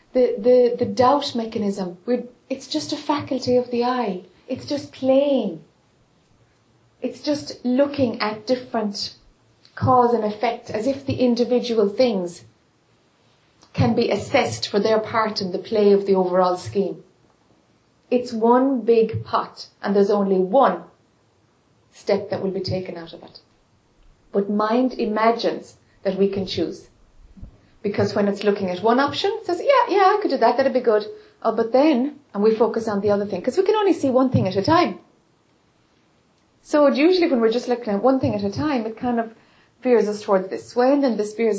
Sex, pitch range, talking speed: female, 200-260 Hz, 185 wpm